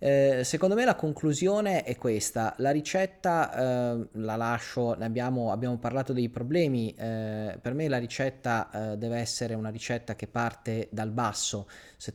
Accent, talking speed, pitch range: native, 165 wpm, 110-130 Hz